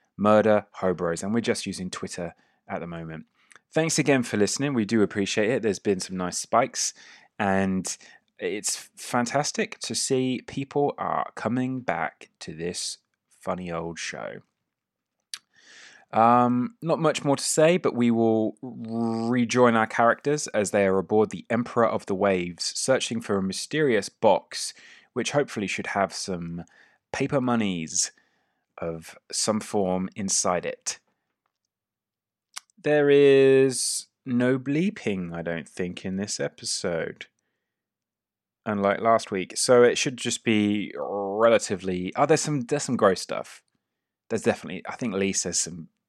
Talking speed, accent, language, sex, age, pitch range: 140 wpm, British, English, male, 20-39, 95-130 Hz